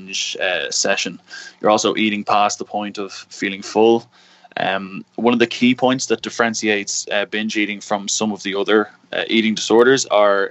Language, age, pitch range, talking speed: English, 20-39, 100-110 Hz, 170 wpm